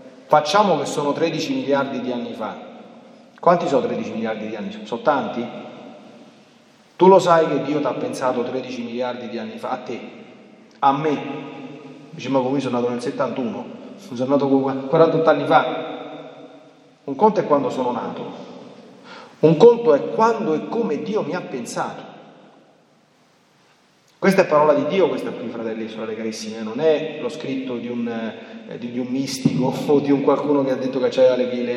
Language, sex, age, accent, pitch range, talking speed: Italian, male, 40-59, native, 130-210 Hz, 175 wpm